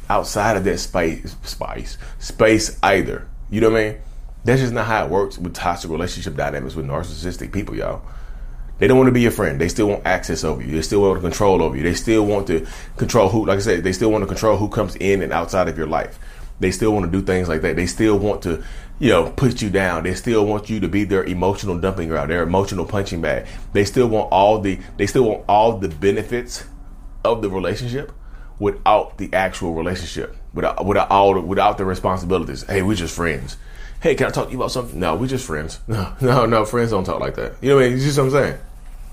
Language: English